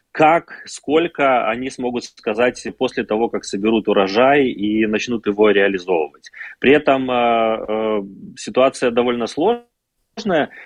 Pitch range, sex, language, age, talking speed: 100-120 Hz, male, Russian, 30-49, 120 wpm